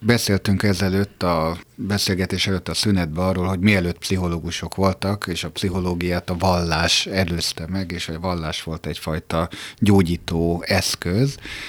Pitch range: 85-105 Hz